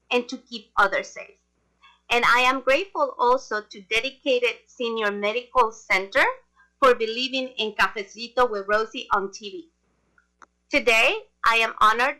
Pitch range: 220-275 Hz